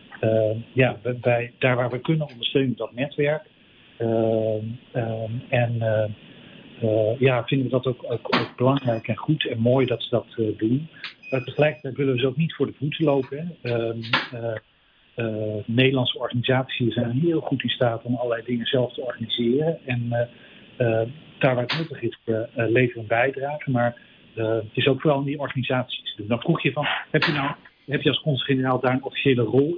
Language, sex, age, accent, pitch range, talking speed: English, male, 50-69, Dutch, 115-135 Hz, 200 wpm